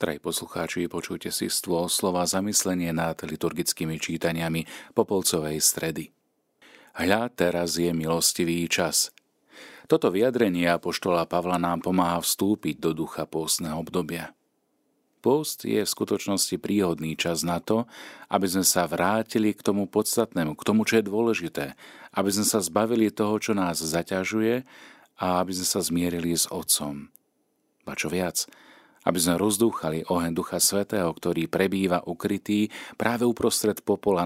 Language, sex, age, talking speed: Slovak, male, 40-59, 135 wpm